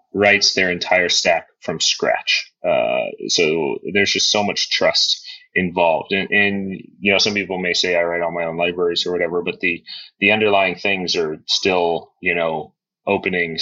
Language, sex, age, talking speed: English, male, 30-49, 175 wpm